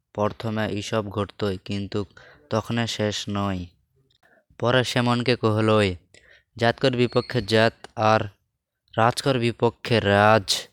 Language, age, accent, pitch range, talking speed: English, 20-39, Indian, 105-115 Hz, 125 wpm